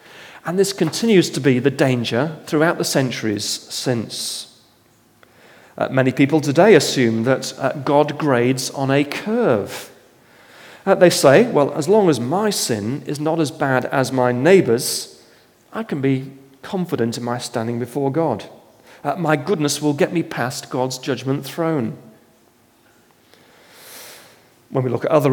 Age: 40-59